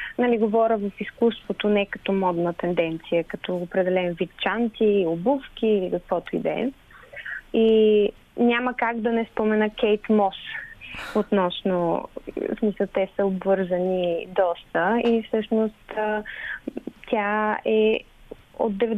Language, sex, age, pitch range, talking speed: Bulgarian, female, 20-39, 195-230 Hz, 115 wpm